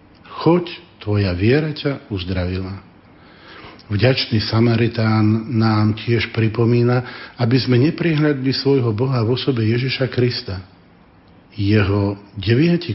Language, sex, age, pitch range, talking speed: Slovak, male, 50-69, 105-125 Hz, 95 wpm